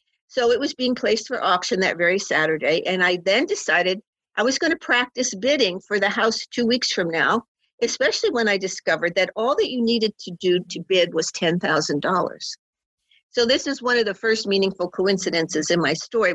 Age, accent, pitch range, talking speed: 50-69, American, 180-240 Hz, 200 wpm